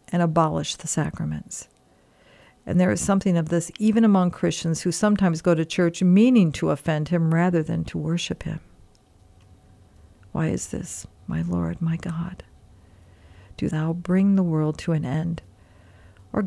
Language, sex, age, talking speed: English, female, 50-69, 155 wpm